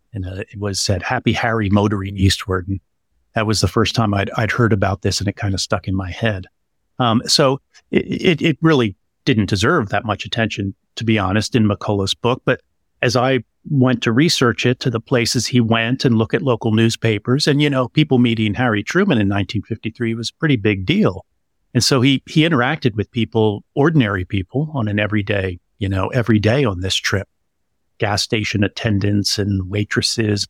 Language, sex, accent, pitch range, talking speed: English, male, American, 100-125 Hz, 195 wpm